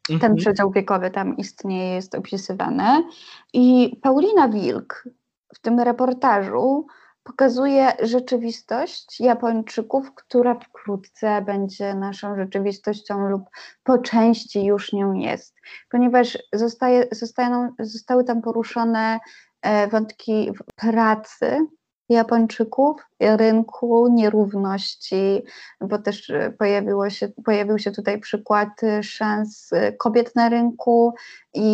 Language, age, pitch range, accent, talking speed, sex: Polish, 20-39, 205-240 Hz, native, 95 wpm, female